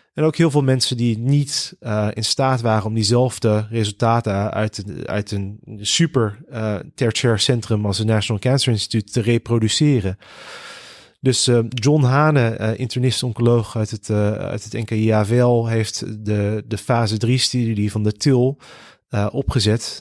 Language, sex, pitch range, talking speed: Dutch, male, 110-130 Hz, 150 wpm